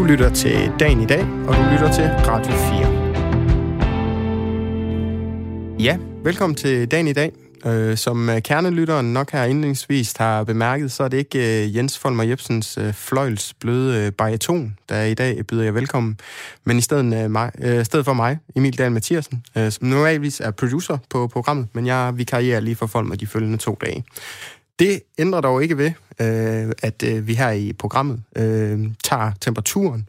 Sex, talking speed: male, 150 wpm